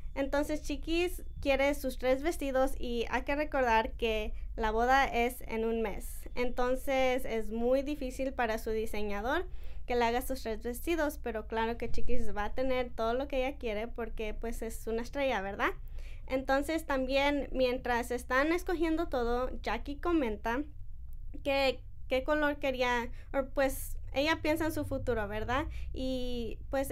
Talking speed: 155 wpm